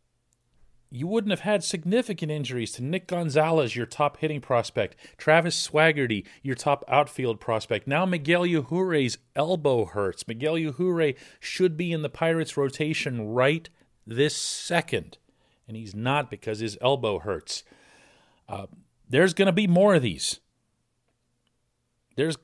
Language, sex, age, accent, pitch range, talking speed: English, male, 40-59, American, 120-165 Hz, 135 wpm